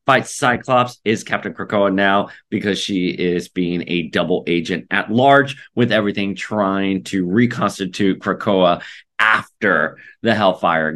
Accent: American